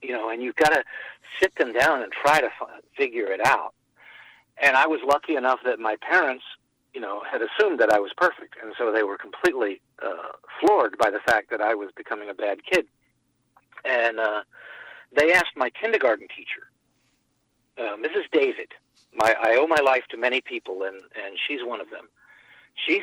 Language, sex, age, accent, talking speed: English, male, 50-69, American, 195 wpm